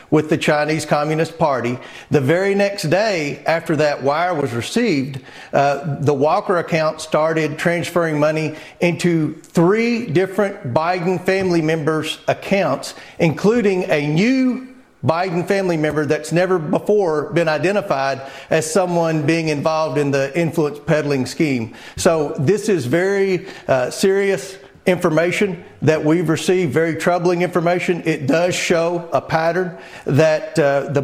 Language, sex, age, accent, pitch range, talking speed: English, male, 40-59, American, 155-185 Hz, 135 wpm